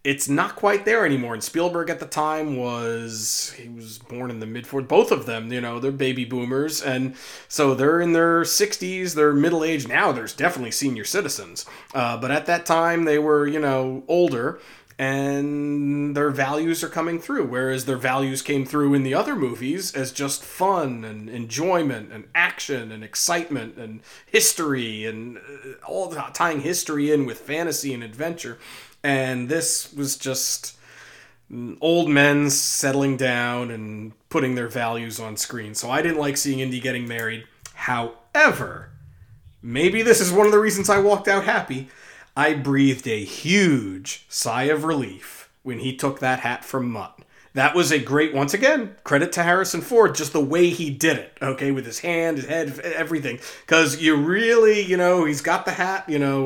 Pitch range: 130-165 Hz